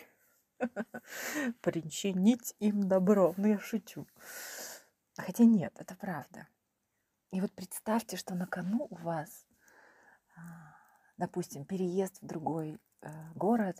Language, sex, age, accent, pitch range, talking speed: Ukrainian, female, 30-49, native, 170-210 Hz, 100 wpm